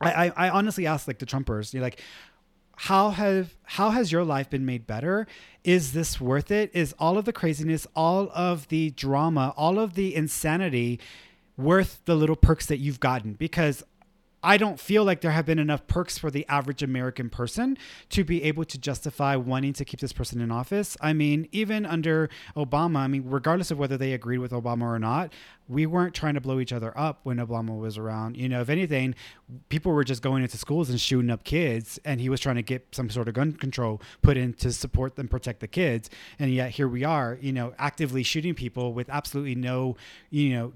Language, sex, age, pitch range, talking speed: English, male, 30-49, 130-165 Hz, 215 wpm